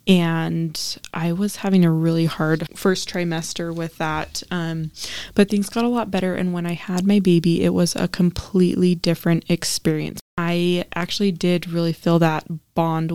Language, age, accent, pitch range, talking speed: English, 20-39, American, 165-190 Hz, 170 wpm